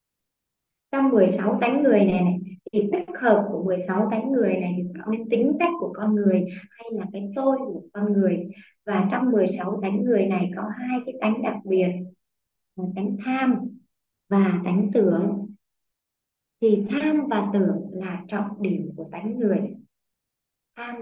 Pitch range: 190-235 Hz